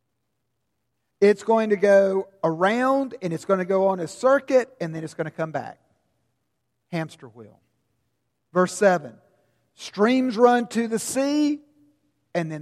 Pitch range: 125-195 Hz